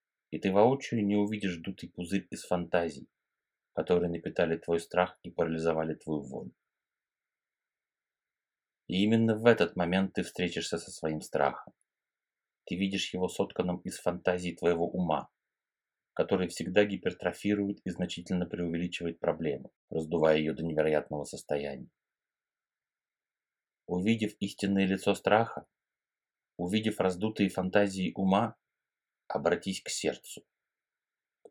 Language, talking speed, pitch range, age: Russian, 110 wpm, 85-100 Hz, 30-49